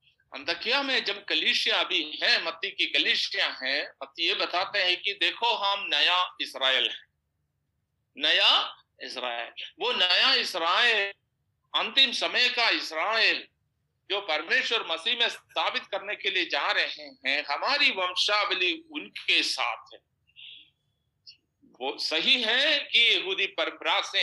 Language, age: Hindi, 50-69